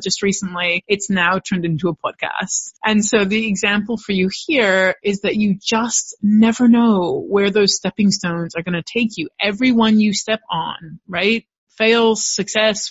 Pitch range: 180-220 Hz